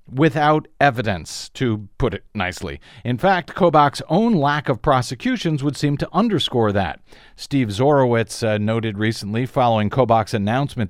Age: 50-69